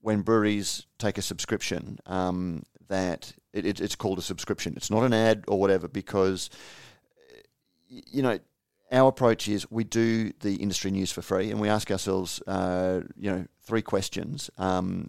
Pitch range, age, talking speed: 95-110 Hz, 30-49, 165 wpm